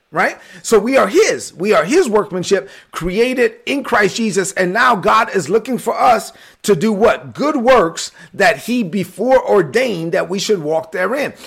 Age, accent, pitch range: 40-59, American, 185-240 Hz